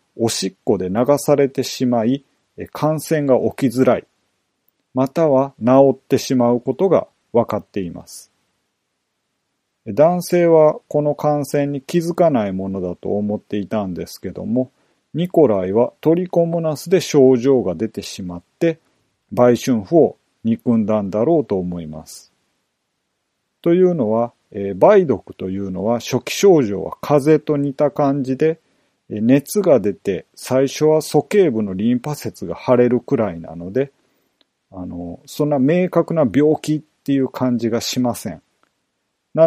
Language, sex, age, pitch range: Japanese, male, 40-59, 105-155 Hz